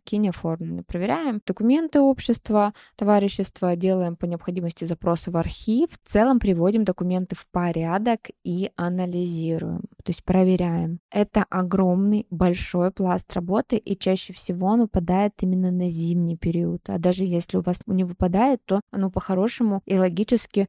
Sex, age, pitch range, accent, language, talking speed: female, 20-39, 175-205 Hz, native, Russian, 140 wpm